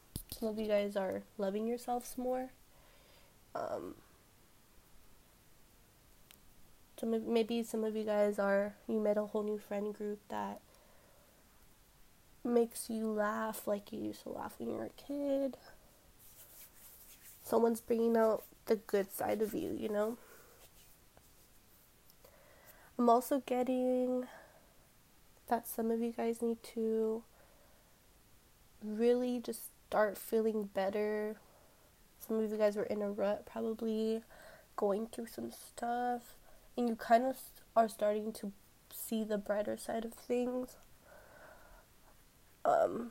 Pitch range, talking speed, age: 210-235 Hz, 125 wpm, 20-39